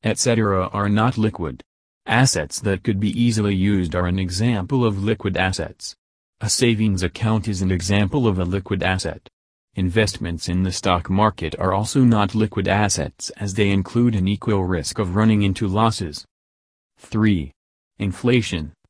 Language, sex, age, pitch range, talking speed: English, male, 30-49, 90-110 Hz, 150 wpm